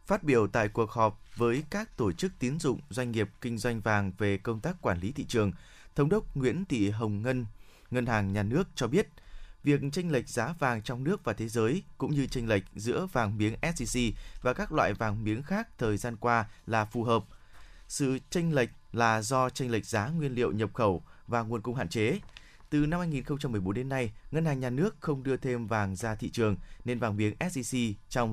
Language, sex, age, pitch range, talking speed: Vietnamese, male, 20-39, 105-135 Hz, 220 wpm